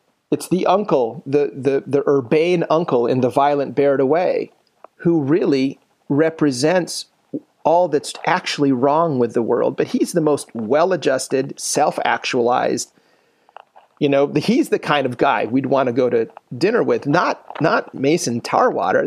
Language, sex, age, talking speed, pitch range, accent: English, male, 40-59, 150 wpm, 125-155 Hz, American